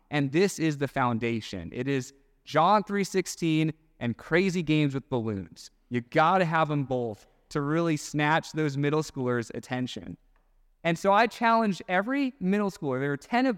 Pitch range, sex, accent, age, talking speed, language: 135-185 Hz, male, American, 30-49, 170 wpm, English